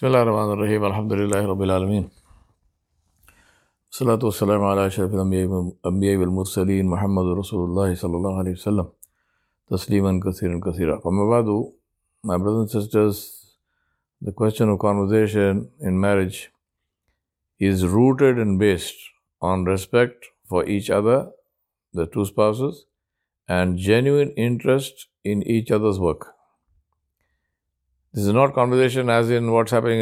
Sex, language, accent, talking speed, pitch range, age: male, English, Indian, 120 wpm, 95-110 Hz, 50-69